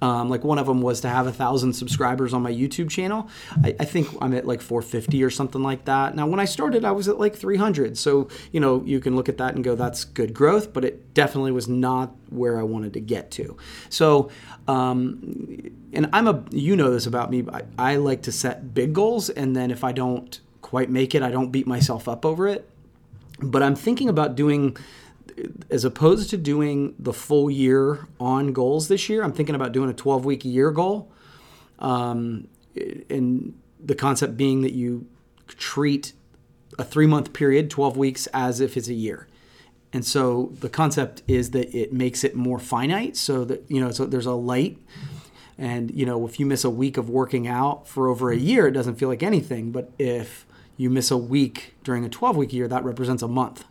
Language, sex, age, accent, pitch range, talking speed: English, male, 30-49, American, 125-145 Hz, 210 wpm